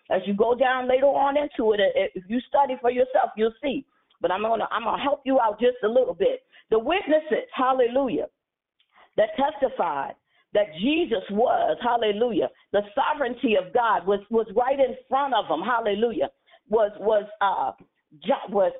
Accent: American